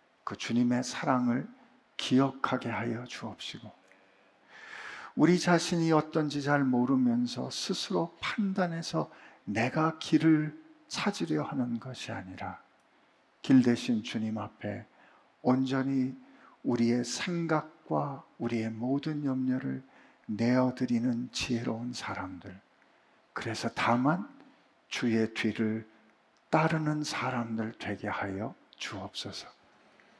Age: 50-69